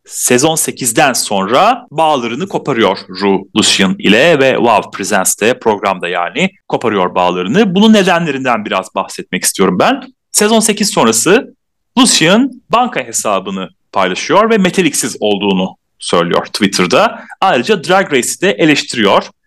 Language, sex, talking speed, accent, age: Turkish, male, 115 wpm, native, 40-59